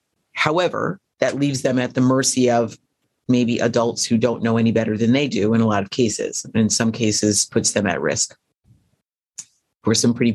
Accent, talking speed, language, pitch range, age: American, 195 wpm, English, 115-130 Hz, 30-49